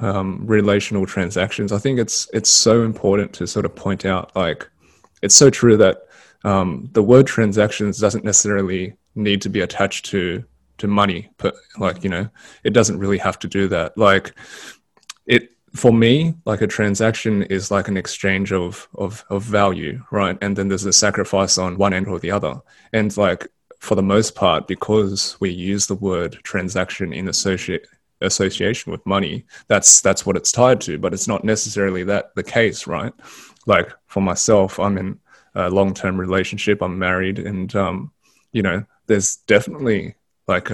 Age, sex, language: 20-39, male, English